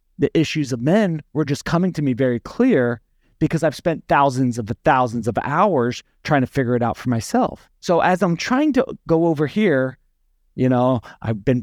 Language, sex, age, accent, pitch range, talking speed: English, male, 40-59, American, 125-160 Hz, 200 wpm